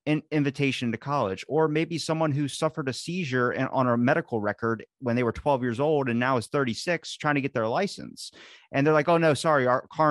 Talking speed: 230 wpm